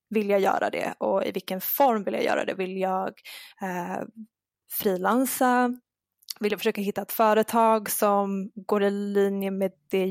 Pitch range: 200-230 Hz